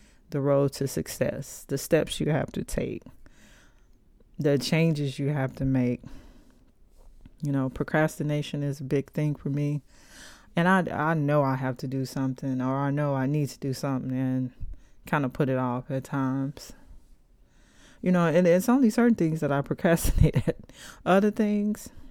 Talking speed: 170 wpm